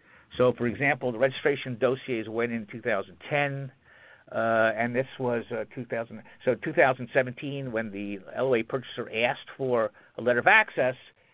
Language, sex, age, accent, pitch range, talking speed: English, male, 50-69, American, 115-140 Hz, 145 wpm